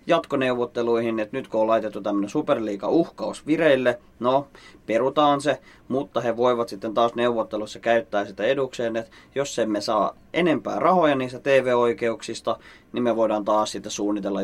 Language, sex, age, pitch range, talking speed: Finnish, male, 30-49, 110-135 Hz, 150 wpm